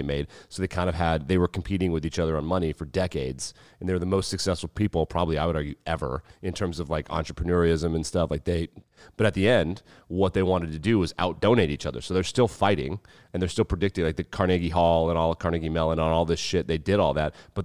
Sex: male